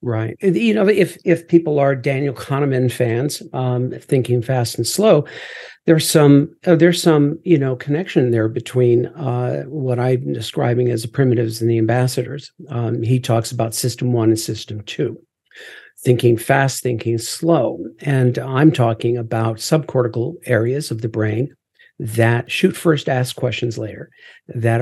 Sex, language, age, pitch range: male, English, 50-69, 115-150 Hz